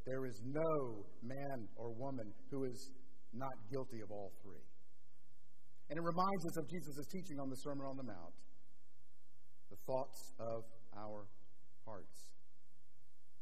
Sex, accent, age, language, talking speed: male, American, 50-69, English, 140 wpm